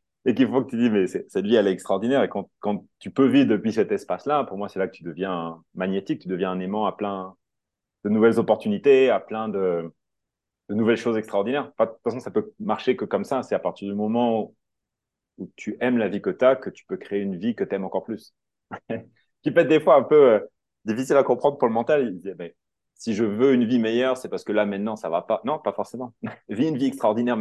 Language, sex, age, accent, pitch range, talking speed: French, male, 30-49, French, 100-130 Hz, 255 wpm